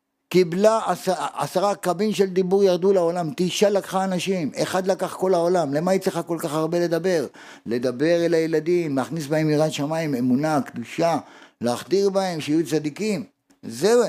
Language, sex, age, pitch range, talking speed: Hebrew, male, 50-69, 180-250 Hz, 155 wpm